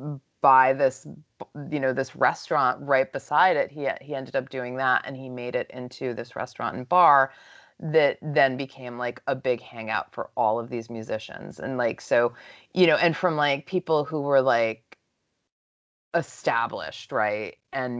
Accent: American